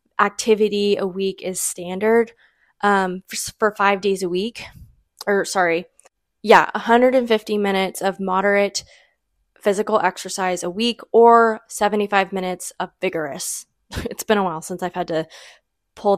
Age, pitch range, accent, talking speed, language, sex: 20-39, 185-220 Hz, American, 135 wpm, English, female